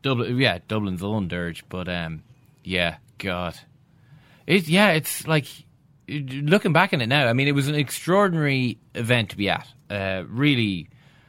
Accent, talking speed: Irish, 160 wpm